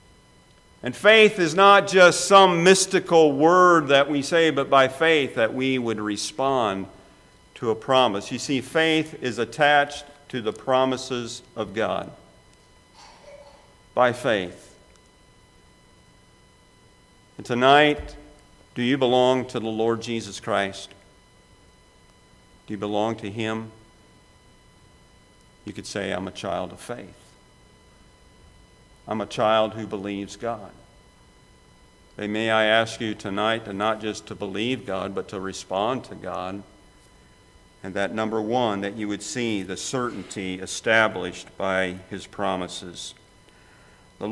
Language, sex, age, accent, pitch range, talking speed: English, male, 50-69, American, 105-130 Hz, 125 wpm